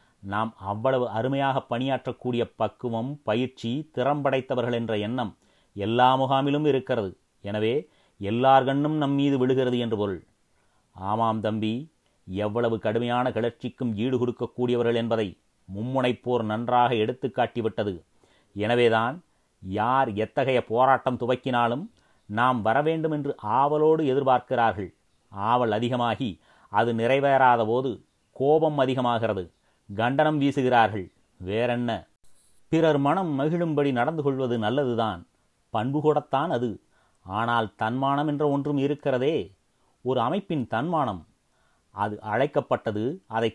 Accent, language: native, Tamil